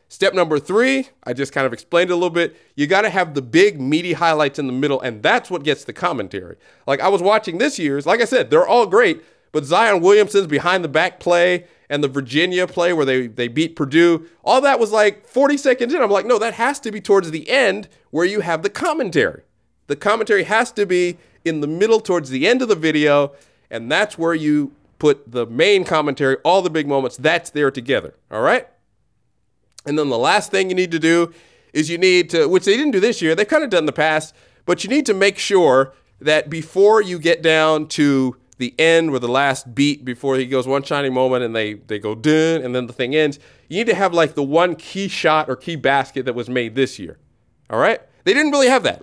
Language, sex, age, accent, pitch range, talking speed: English, male, 30-49, American, 135-195 Hz, 235 wpm